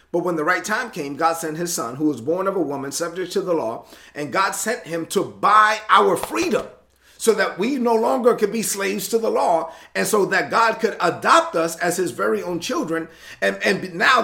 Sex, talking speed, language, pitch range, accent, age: male, 230 wpm, English, 165-230 Hz, American, 40-59